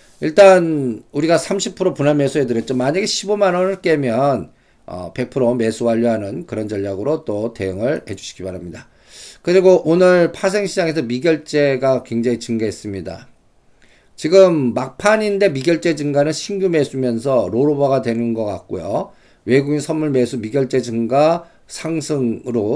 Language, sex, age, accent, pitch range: Korean, male, 50-69, native, 115-160 Hz